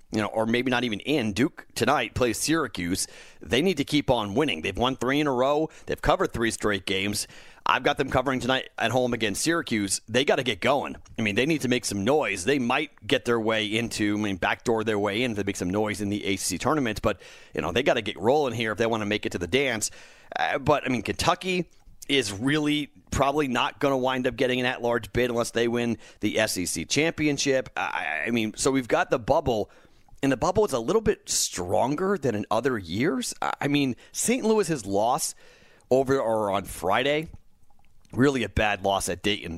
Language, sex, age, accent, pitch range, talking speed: English, male, 40-59, American, 105-135 Hz, 225 wpm